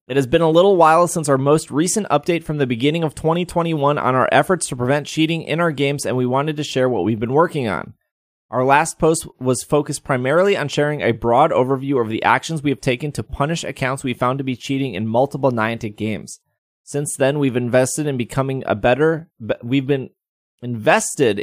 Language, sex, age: English, male, 20-39